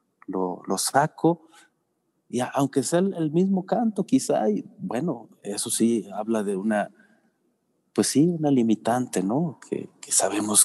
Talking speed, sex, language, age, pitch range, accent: 145 wpm, male, Spanish, 40-59, 100-125 Hz, Mexican